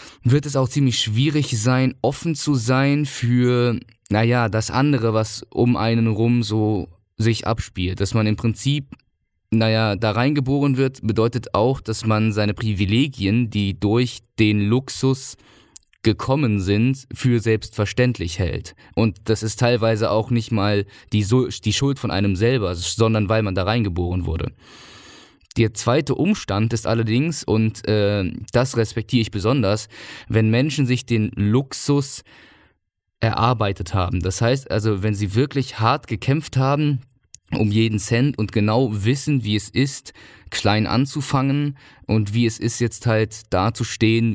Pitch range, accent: 105-125 Hz, German